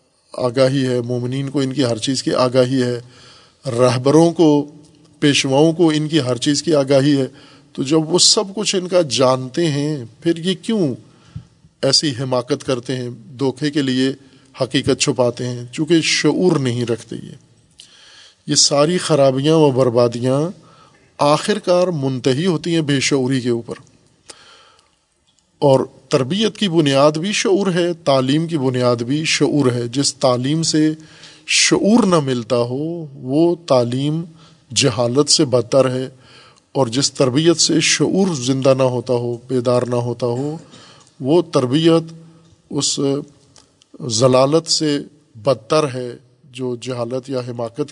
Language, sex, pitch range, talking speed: Urdu, male, 130-160 Hz, 140 wpm